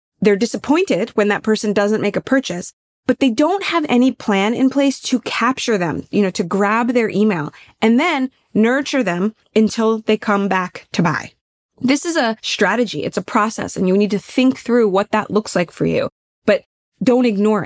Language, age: English, 20-39